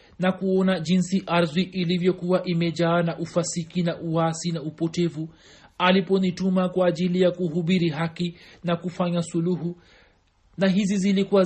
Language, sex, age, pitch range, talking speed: Swahili, male, 40-59, 170-190 Hz, 125 wpm